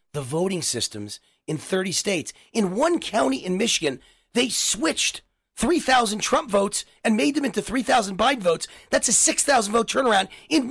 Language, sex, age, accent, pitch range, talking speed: English, male, 30-49, American, 205-295 Hz, 165 wpm